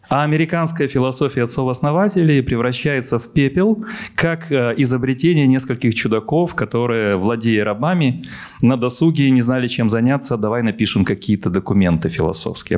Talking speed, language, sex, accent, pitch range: 115 wpm, Ukrainian, male, native, 110-155 Hz